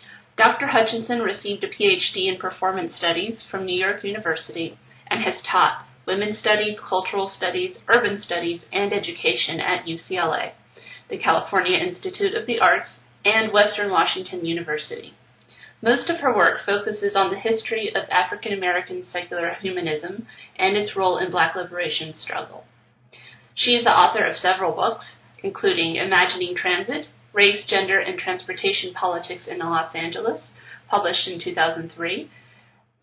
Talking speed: 135 wpm